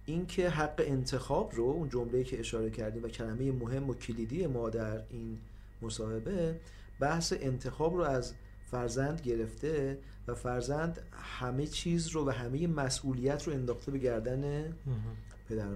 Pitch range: 110-155 Hz